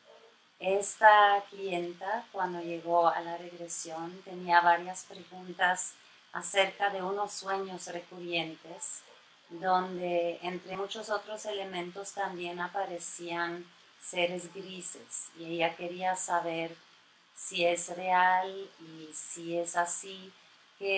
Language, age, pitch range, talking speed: Spanish, 30-49, 170-200 Hz, 105 wpm